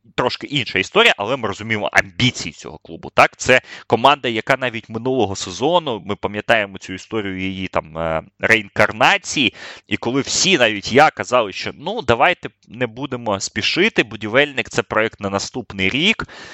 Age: 20-39